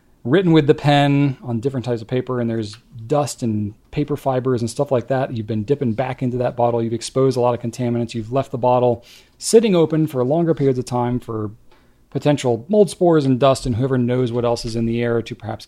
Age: 40-59